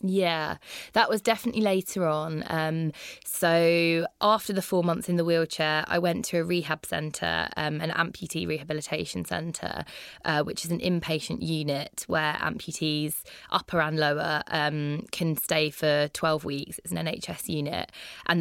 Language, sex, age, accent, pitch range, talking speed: English, female, 20-39, British, 155-175 Hz, 155 wpm